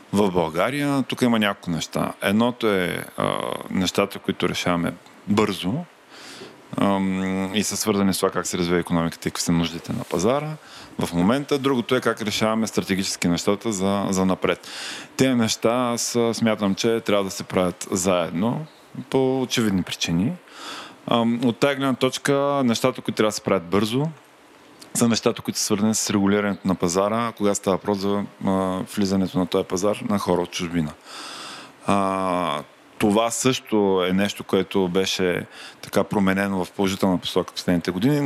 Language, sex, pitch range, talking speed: Bulgarian, male, 90-110 Hz, 155 wpm